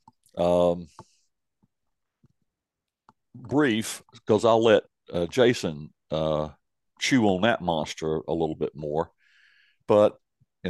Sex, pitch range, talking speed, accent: male, 80-105 Hz, 100 wpm, American